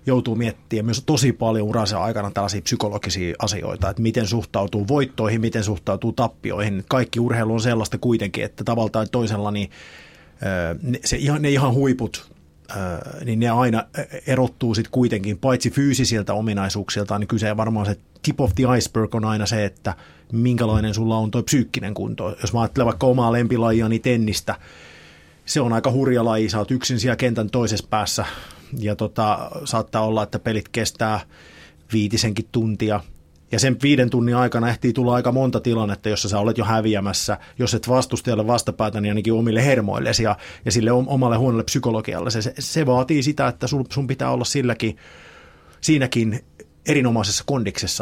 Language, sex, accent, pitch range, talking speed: Finnish, male, native, 105-125 Hz, 160 wpm